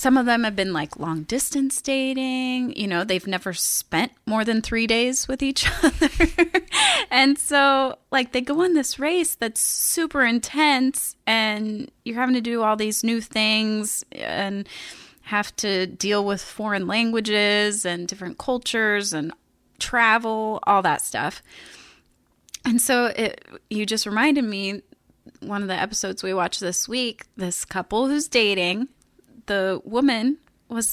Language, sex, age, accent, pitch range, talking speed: English, female, 20-39, American, 200-260 Hz, 145 wpm